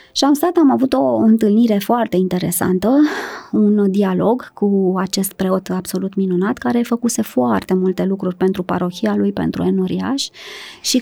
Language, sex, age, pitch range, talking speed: Romanian, male, 20-39, 190-250 Hz, 150 wpm